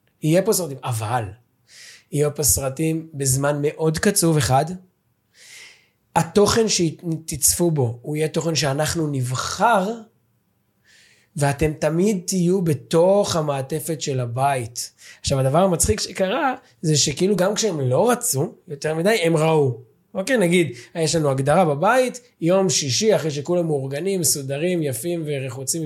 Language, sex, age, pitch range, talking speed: Hebrew, male, 20-39, 130-190 Hz, 125 wpm